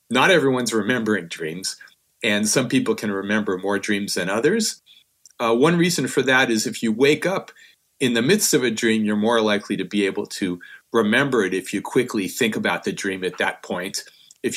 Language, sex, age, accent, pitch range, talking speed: English, male, 40-59, American, 105-140 Hz, 200 wpm